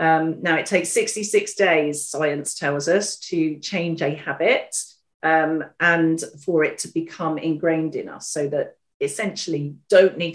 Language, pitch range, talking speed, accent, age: English, 150-185 Hz, 155 wpm, British, 40-59